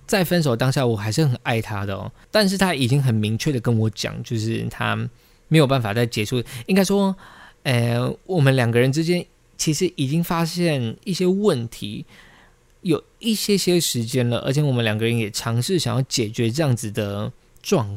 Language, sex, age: Chinese, male, 20-39